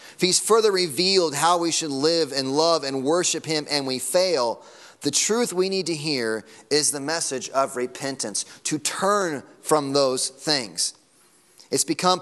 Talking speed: 165 wpm